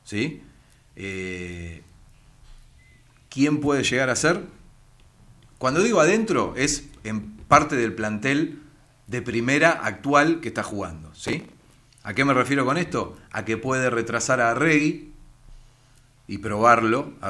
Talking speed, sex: 120 wpm, male